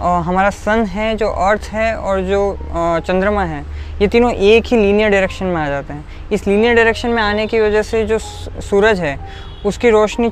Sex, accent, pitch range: female, native, 180-215 Hz